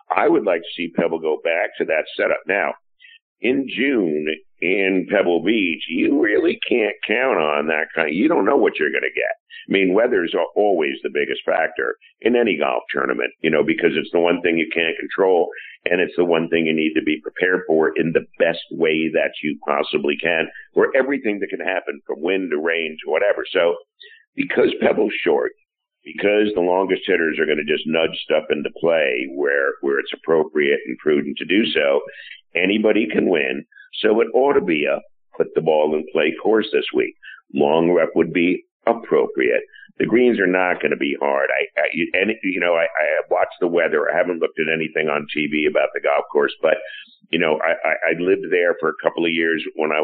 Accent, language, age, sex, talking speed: American, English, 50-69, male, 215 wpm